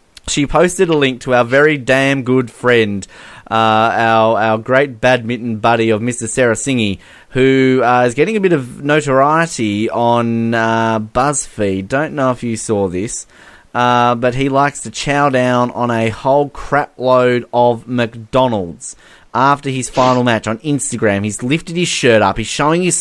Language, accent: English, Australian